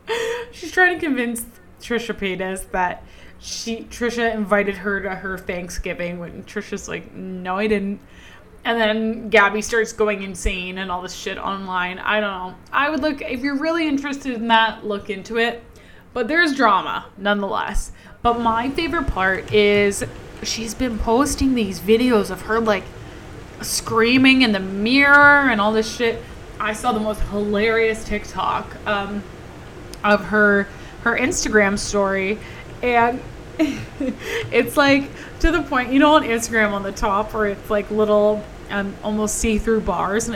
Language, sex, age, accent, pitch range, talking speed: English, female, 20-39, American, 205-270 Hz, 155 wpm